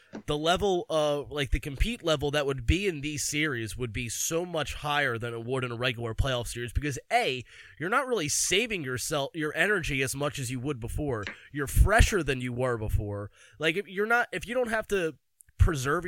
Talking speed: 215 wpm